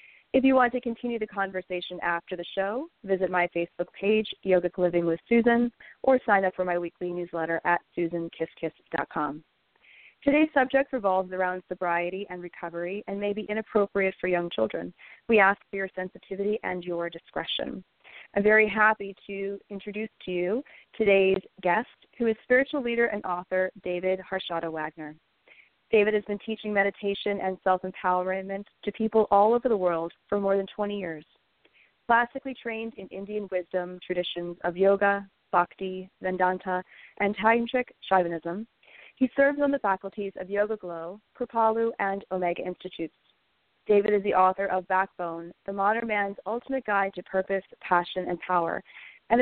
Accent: American